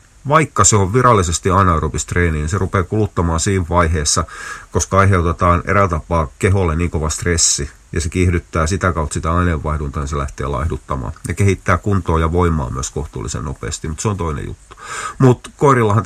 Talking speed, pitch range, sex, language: 170 wpm, 80-100 Hz, male, Finnish